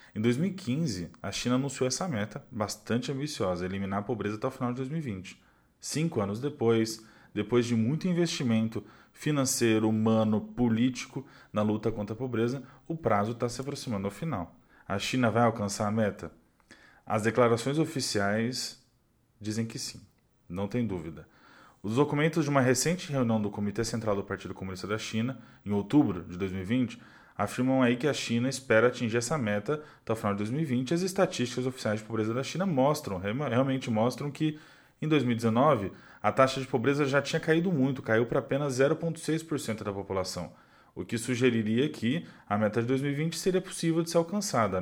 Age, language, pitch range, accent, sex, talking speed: 20-39, Portuguese, 105-135 Hz, Brazilian, male, 170 wpm